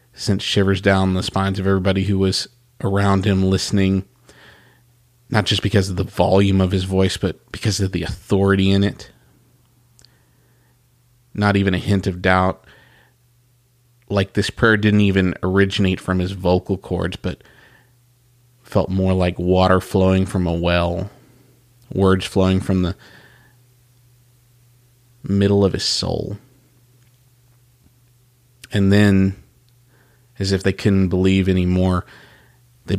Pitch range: 95-120 Hz